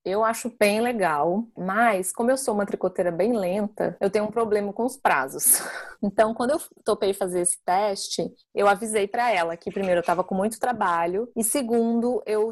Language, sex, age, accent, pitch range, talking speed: Portuguese, female, 20-39, Brazilian, 195-235 Hz, 190 wpm